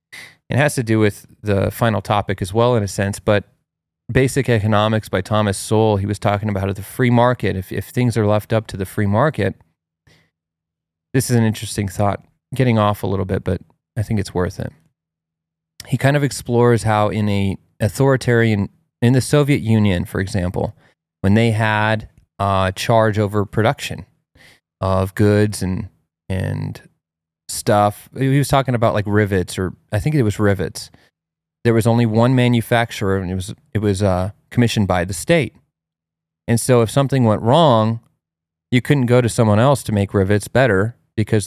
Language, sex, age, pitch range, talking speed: English, male, 30-49, 95-120 Hz, 175 wpm